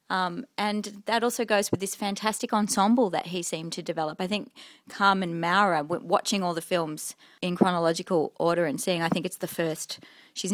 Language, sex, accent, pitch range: English, female, Australian, 175-210 Hz